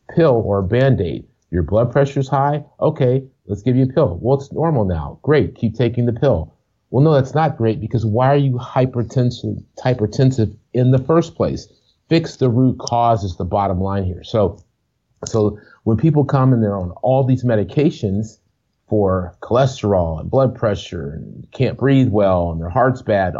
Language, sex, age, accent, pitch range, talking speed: English, male, 40-59, American, 100-130 Hz, 180 wpm